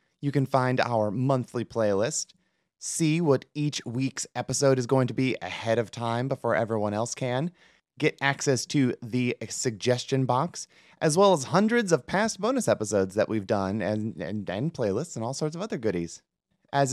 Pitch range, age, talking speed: 115-150 Hz, 30-49, 175 wpm